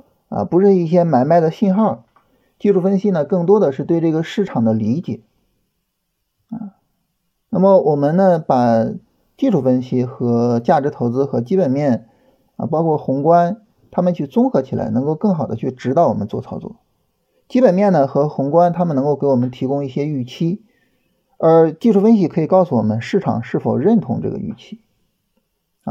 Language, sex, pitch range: Chinese, male, 135-200 Hz